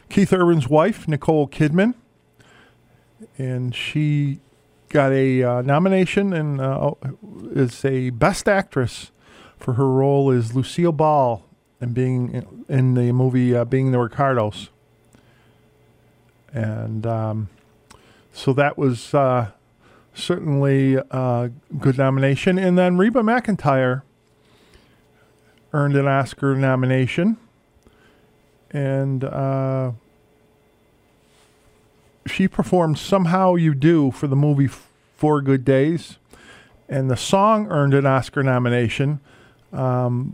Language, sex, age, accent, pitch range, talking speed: English, male, 40-59, American, 125-150 Hz, 105 wpm